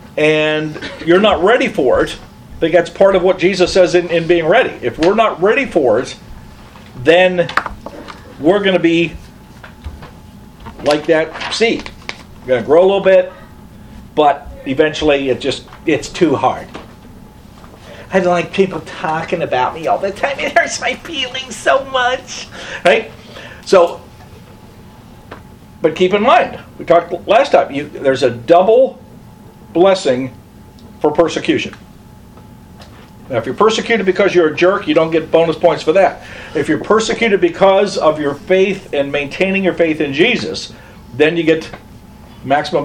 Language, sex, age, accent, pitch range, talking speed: English, male, 50-69, American, 150-190 Hz, 150 wpm